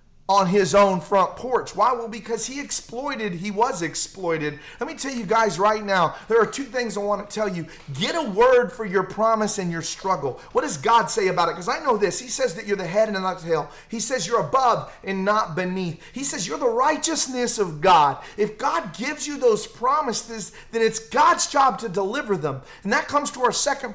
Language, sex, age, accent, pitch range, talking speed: English, male, 30-49, American, 190-260 Hz, 230 wpm